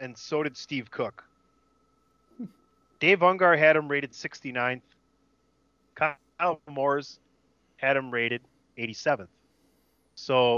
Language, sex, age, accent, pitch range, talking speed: English, male, 30-49, American, 115-150 Hz, 100 wpm